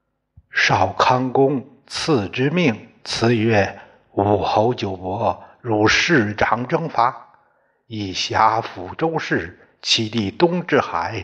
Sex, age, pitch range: male, 60-79, 100-130 Hz